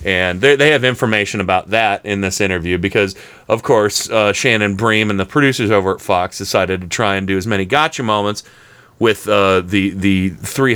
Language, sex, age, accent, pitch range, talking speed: English, male, 30-49, American, 105-145 Hz, 195 wpm